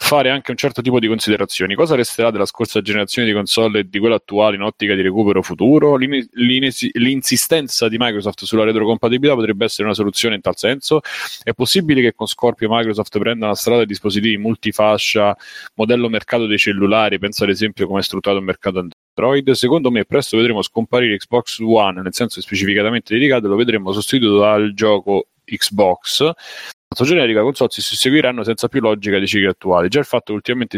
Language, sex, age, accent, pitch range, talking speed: Italian, male, 30-49, native, 100-120 Hz, 180 wpm